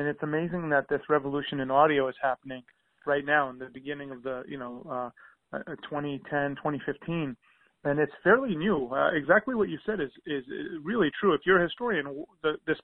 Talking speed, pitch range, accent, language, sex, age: 190 wpm, 140-165 Hz, American, English, male, 30-49